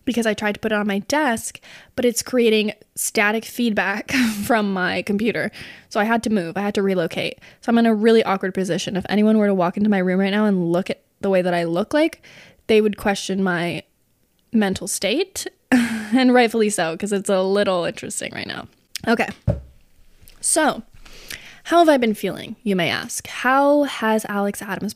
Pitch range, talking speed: 190-230 Hz, 195 wpm